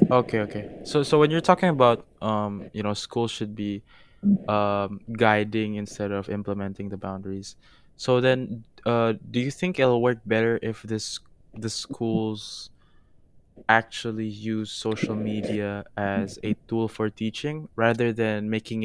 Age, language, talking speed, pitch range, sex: 20-39, Indonesian, 145 wpm, 100-115 Hz, male